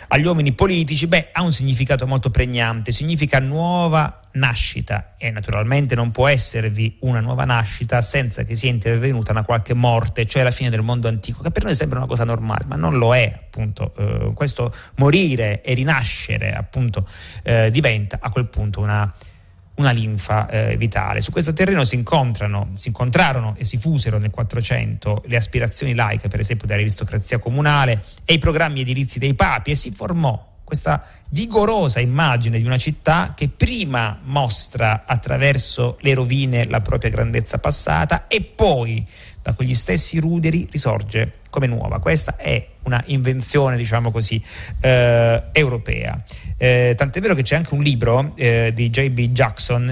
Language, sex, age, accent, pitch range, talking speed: Italian, male, 30-49, native, 110-140 Hz, 160 wpm